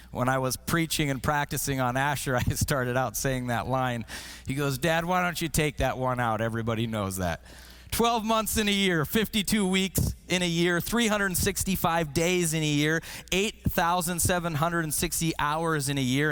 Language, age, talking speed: English, 30-49, 175 wpm